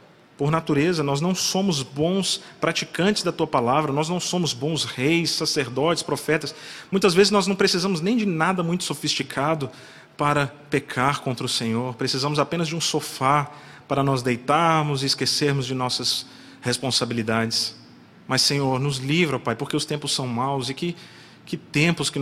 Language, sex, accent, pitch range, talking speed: Portuguese, male, Brazilian, 130-160 Hz, 160 wpm